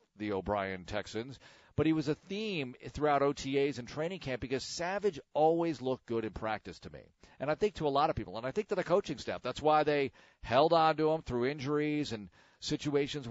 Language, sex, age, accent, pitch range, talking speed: English, male, 40-59, American, 115-155 Hz, 215 wpm